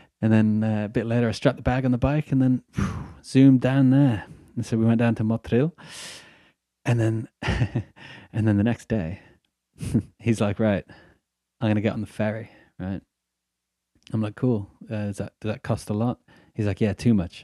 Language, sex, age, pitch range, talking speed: English, male, 20-39, 100-120 Hz, 205 wpm